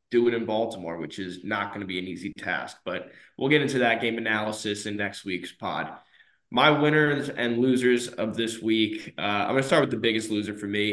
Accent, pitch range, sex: American, 105-120 Hz, male